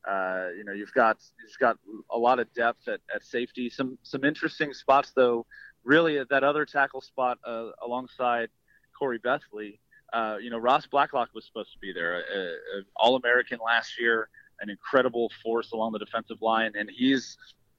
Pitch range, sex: 115-135 Hz, male